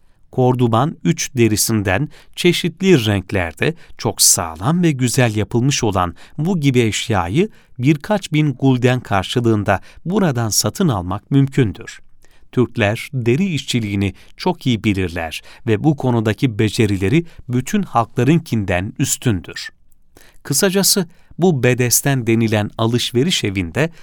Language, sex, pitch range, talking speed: Turkish, male, 105-145 Hz, 100 wpm